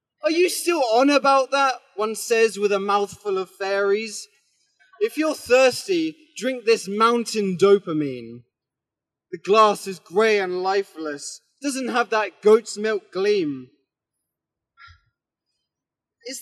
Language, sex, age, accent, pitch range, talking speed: English, male, 20-39, British, 195-300 Hz, 120 wpm